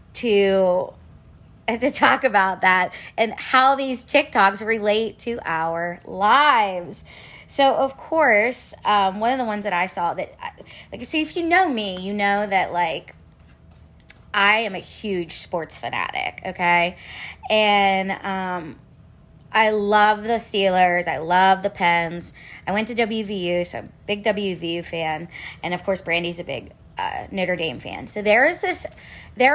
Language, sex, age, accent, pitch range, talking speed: English, female, 20-39, American, 190-235 Hz, 160 wpm